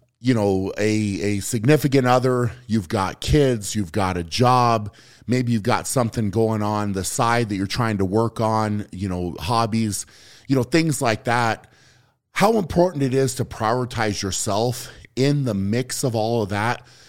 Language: English